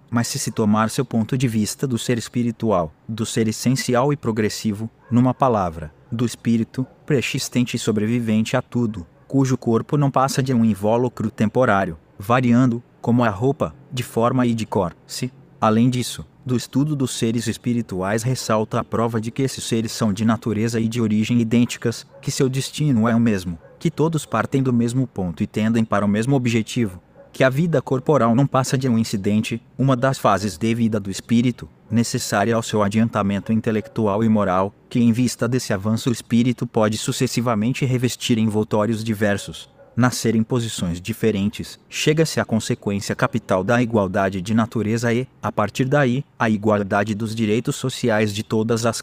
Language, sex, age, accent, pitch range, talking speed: Portuguese, male, 20-39, Brazilian, 110-125 Hz, 175 wpm